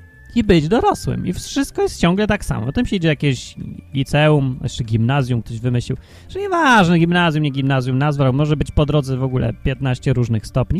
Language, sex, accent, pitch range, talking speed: Polish, male, native, 130-215 Hz, 195 wpm